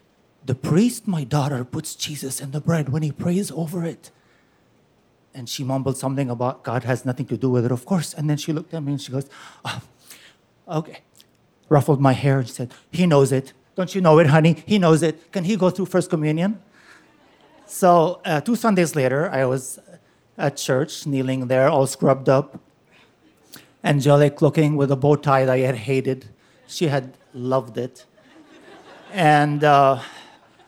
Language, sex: English, male